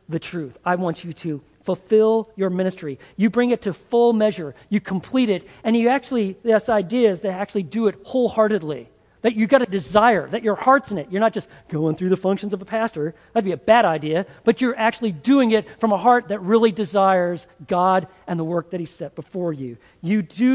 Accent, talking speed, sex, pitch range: American, 225 wpm, male, 175-225 Hz